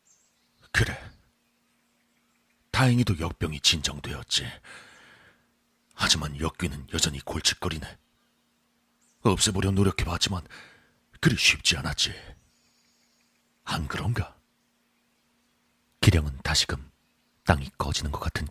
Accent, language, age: native, Korean, 40-59